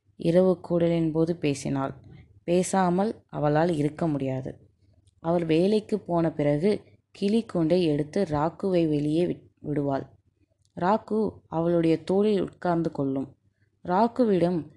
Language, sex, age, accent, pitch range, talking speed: Tamil, female, 20-39, native, 145-185 Hz, 100 wpm